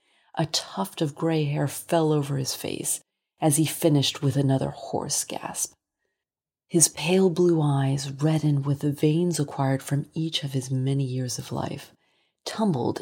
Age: 30-49